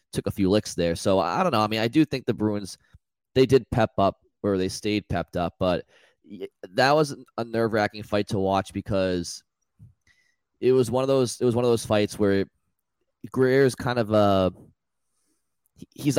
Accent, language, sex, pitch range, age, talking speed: American, English, male, 95-115 Hz, 20-39, 195 wpm